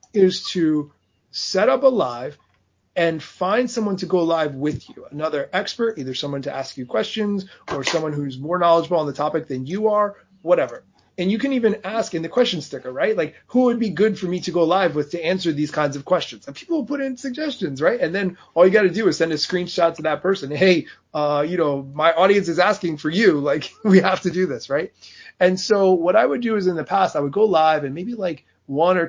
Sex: male